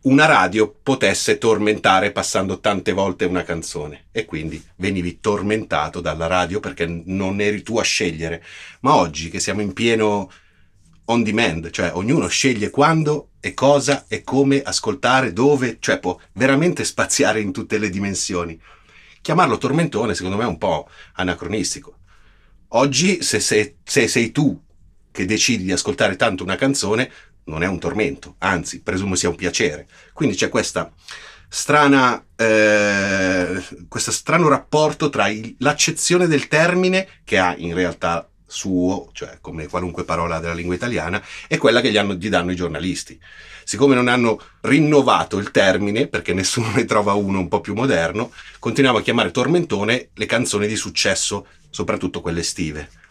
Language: Italian